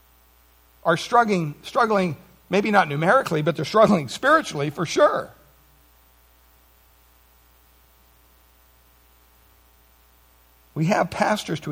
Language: English